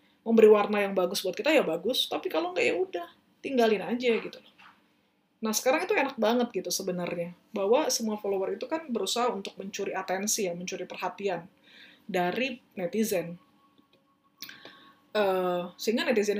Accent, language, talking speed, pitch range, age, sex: native, Indonesian, 145 wpm, 185-250 Hz, 20-39, female